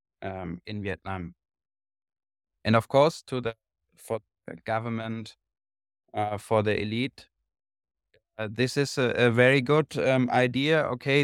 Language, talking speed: English, 135 wpm